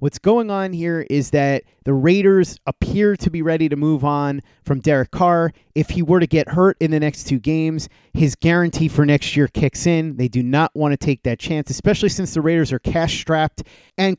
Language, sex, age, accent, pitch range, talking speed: English, male, 30-49, American, 135-170 Hz, 220 wpm